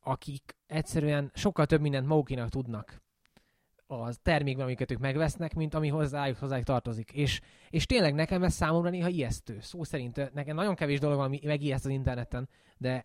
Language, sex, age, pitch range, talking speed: Hungarian, male, 20-39, 130-160 Hz, 165 wpm